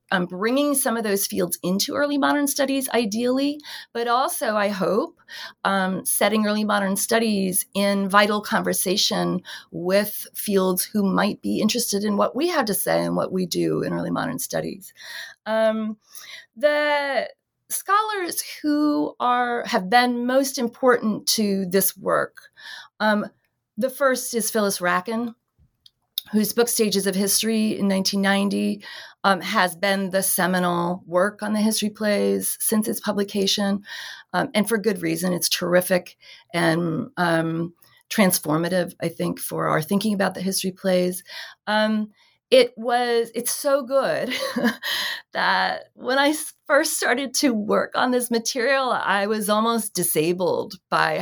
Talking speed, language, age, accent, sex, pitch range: 140 wpm, English, 30-49, American, female, 190-245 Hz